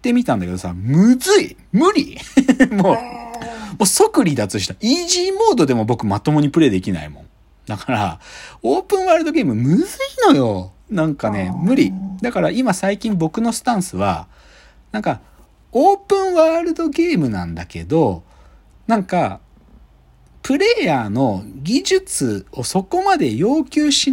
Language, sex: Japanese, male